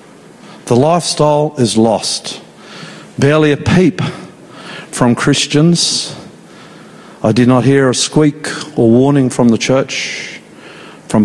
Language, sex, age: English, male, 50-69